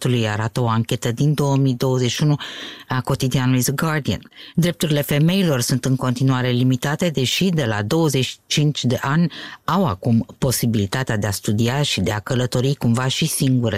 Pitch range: 115-155 Hz